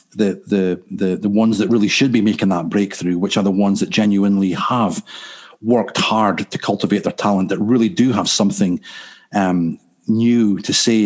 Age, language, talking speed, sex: 40-59, English, 185 wpm, male